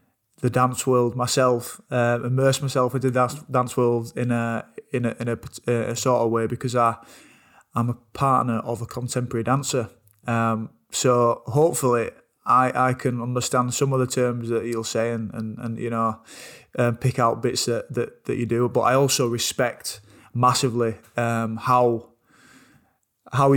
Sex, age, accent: male, 20-39, British